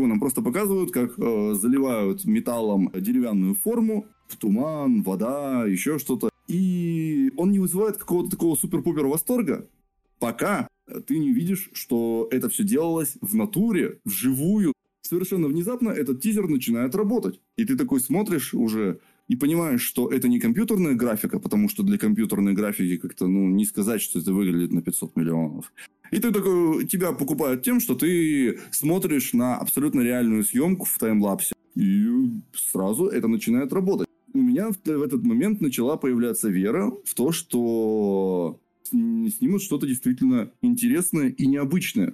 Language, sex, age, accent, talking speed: Russian, male, 20-39, native, 145 wpm